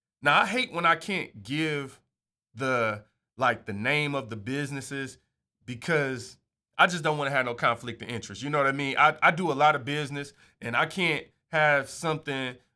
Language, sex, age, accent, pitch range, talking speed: English, male, 30-49, American, 130-165 Hz, 200 wpm